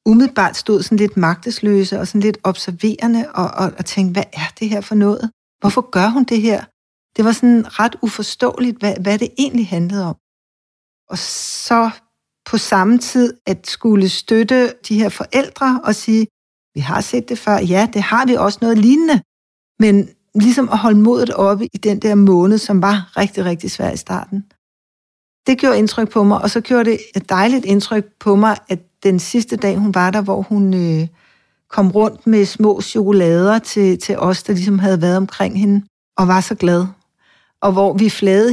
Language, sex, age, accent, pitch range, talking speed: Danish, female, 60-79, native, 190-225 Hz, 190 wpm